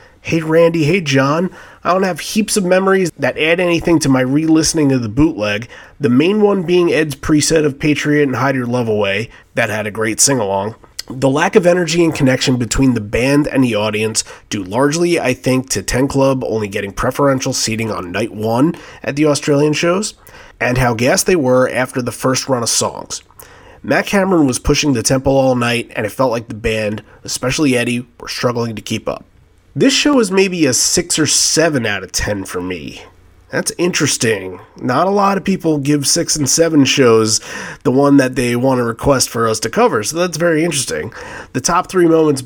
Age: 30-49